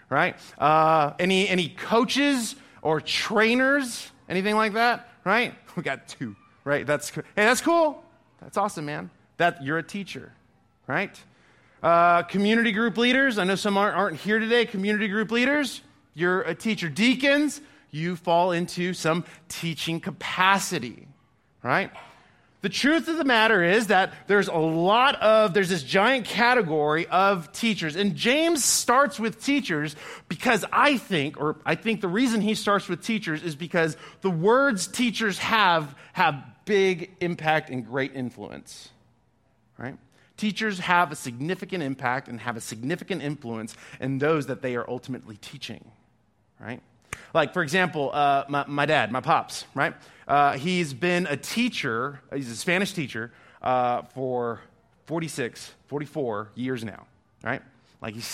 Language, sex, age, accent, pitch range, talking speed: English, male, 30-49, American, 135-205 Hz, 150 wpm